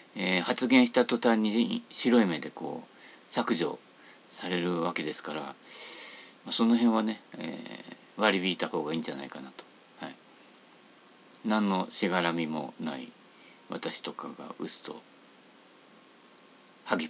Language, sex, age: Japanese, male, 50-69